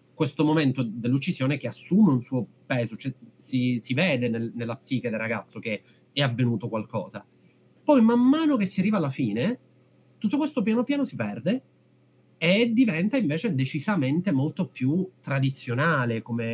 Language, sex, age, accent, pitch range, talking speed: Italian, male, 30-49, native, 120-155 Hz, 155 wpm